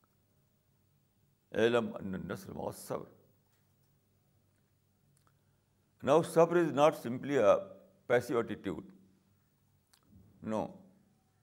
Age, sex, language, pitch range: 60-79, male, Urdu, 105-145 Hz